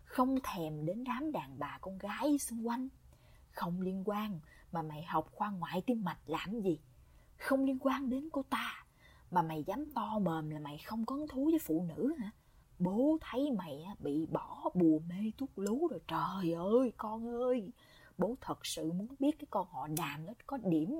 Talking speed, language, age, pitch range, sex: 195 wpm, English, 20-39, 160-250 Hz, female